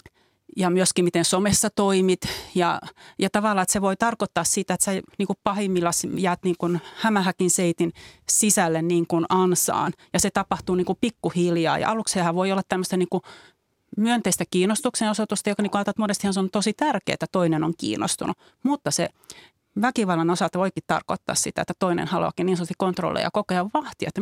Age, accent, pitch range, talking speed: 30-49, native, 180-215 Hz, 170 wpm